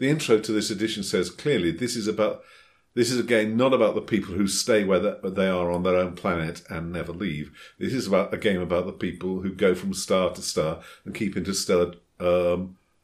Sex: male